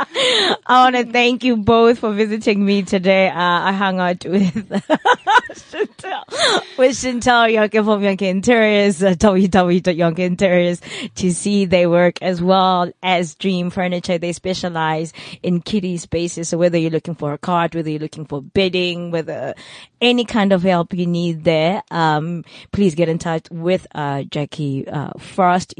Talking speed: 150 wpm